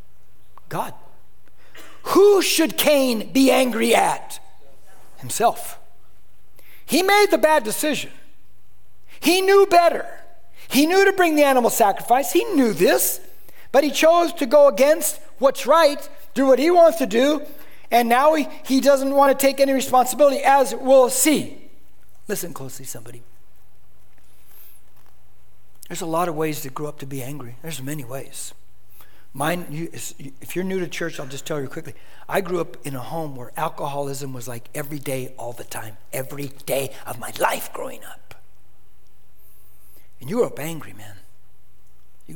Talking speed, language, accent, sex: 155 wpm, English, American, male